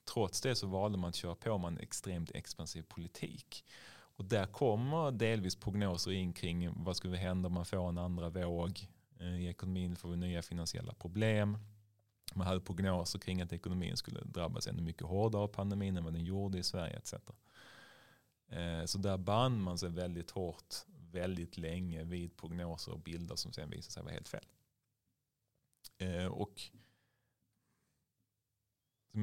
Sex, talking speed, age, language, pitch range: male, 160 wpm, 30-49, Swedish, 85-110 Hz